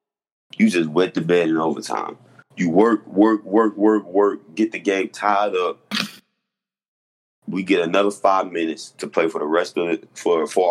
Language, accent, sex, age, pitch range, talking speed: English, American, male, 30-49, 85-110 Hz, 180 wpm